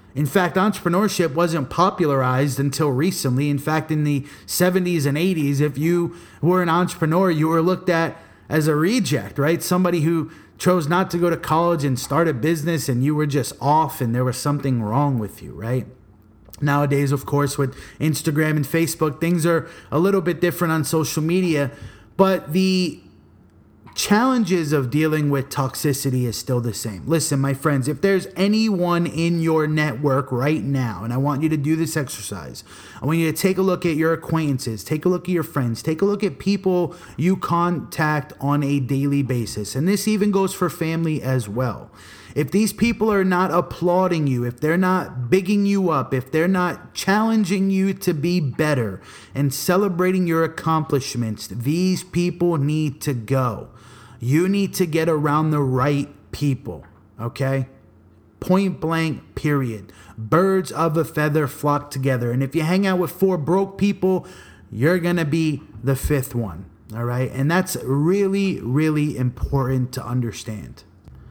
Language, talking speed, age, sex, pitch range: English, 175 wpm, 30-49, male, 130-175 Hz